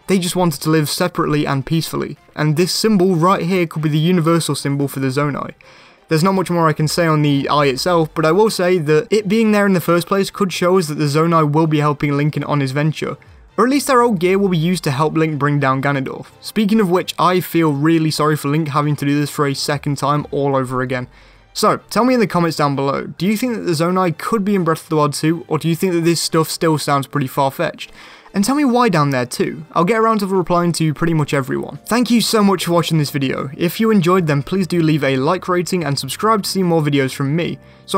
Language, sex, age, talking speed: English, male, 20-39, 265 wpm